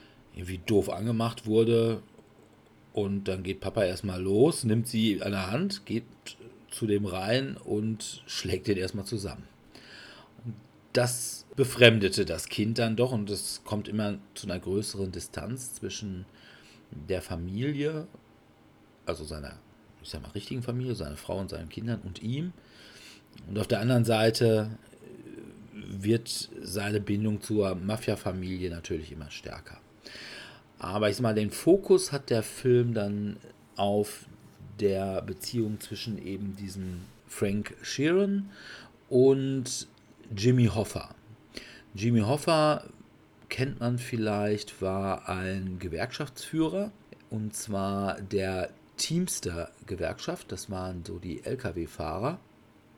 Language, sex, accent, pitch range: German, male, German, 95-115 Hz